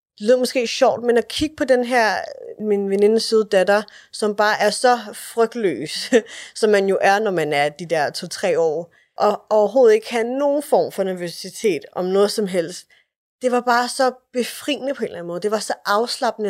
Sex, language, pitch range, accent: female, English, 185-235 Hz, Danish